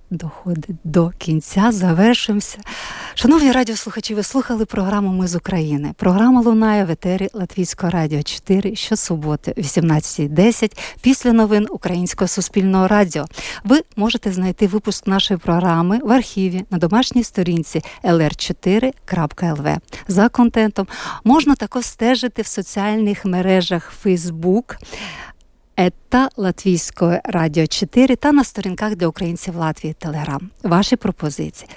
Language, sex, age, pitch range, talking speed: Ukrainian, female, 50-69, 175-225 Hz, 115 wpm